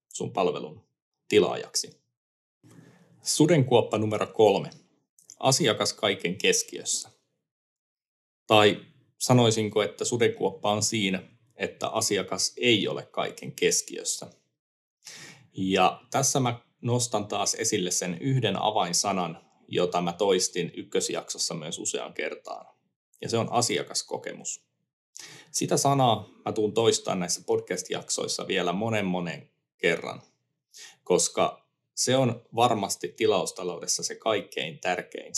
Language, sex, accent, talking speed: Finnish, male, native, 100 wpm